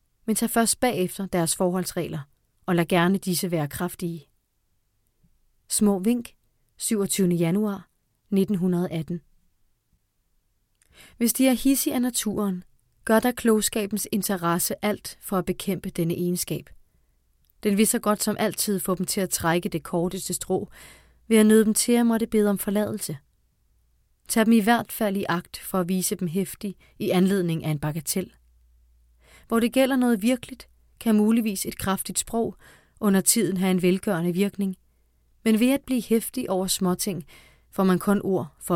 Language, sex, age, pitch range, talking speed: Danish, female, 30-49, 165-210 Hz, 160 wpm